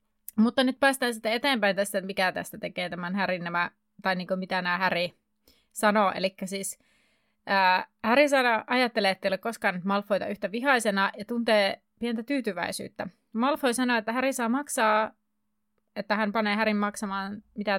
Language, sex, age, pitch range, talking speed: Finnish, female, 30-49, 200-245 Hz, 150 wpm